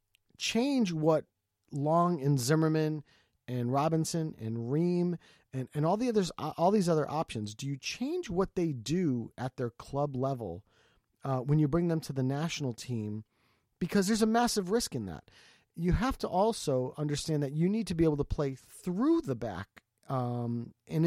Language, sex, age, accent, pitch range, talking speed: English, male, 30-49, American, 130-165 Hz, 175 wpm